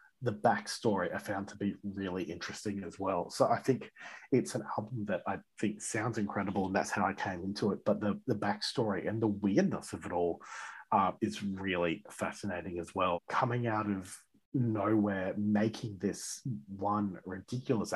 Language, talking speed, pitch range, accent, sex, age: English, 175 wpm, 100-110 Hz, Australian, male, 30-49